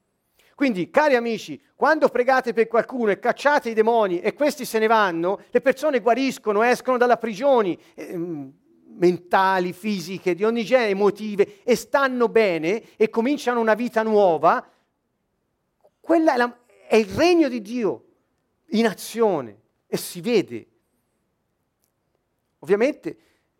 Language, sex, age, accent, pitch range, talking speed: Italian, male, 40-59, native, 170-235 Hz, 125 wpm